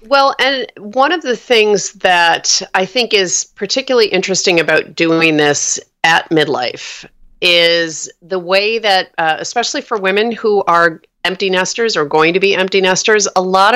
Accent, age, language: American, 40-59, English